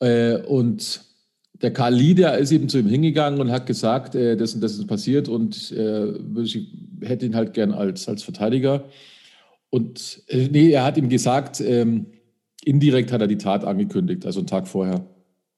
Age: 50-69